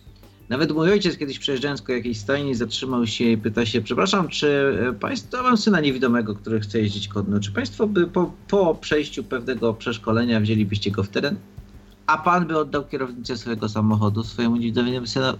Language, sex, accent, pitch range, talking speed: Polish, male, native, 105-135 Hz, 170 wpm